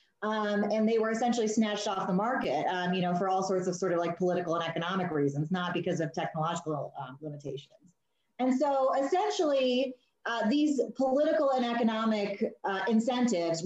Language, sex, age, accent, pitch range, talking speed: English, female, 30-49, American, 185-220 Hz, 170 wpm